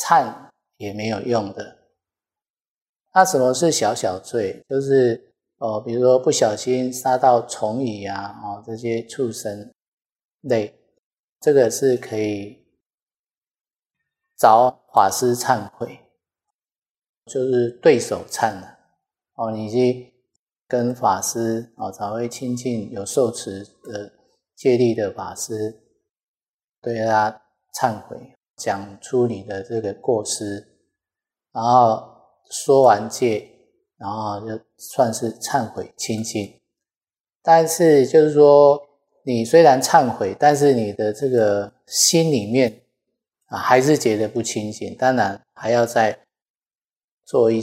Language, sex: Chinese, male